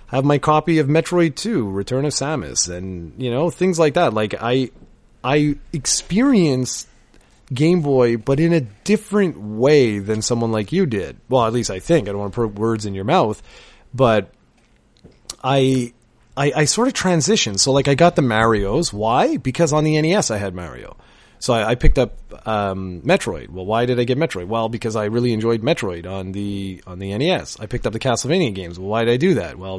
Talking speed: 205 wpm